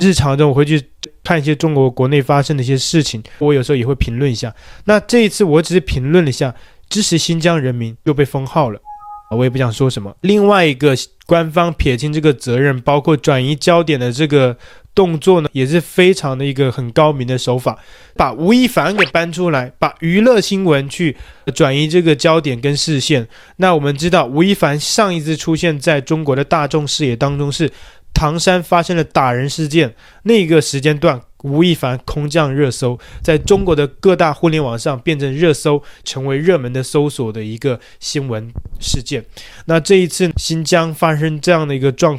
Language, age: Chinese, 20-39